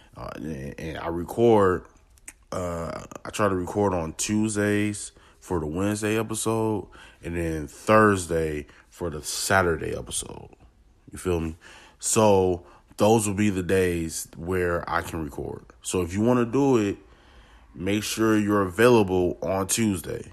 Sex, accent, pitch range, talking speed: male, American, 80-105 Hz, 145 wpm